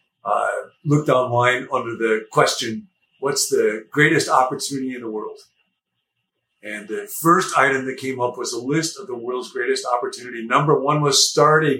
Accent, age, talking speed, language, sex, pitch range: American, 50-69, 170 wpm, English, male, 120-165 Hz